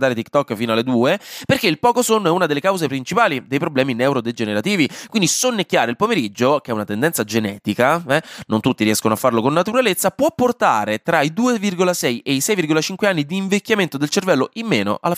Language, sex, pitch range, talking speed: Italian, male, 130-190 Hz, 195 wpm